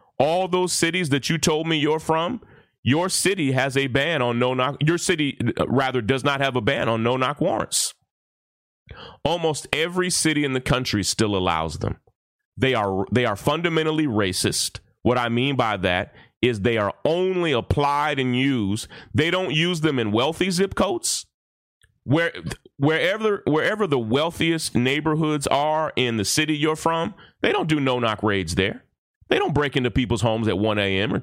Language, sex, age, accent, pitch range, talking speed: English, male, 30-49, American, 110-155 Hz, 175 wpm